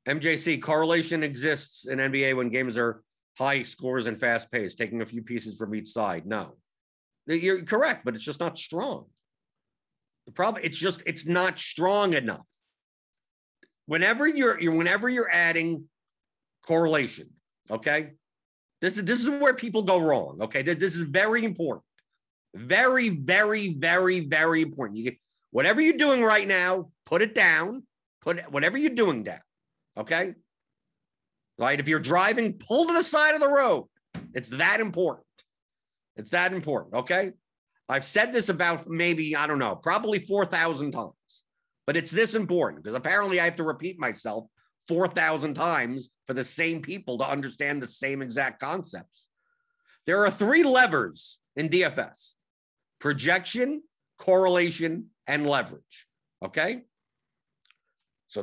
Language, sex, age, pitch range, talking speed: English, male, 50-69, 145-210 Hz, 145 wpm